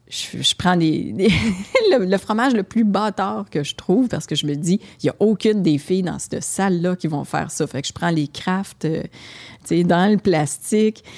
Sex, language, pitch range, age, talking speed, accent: female, French, 160-210 Hz, 30-49, 225 wpm, Canadian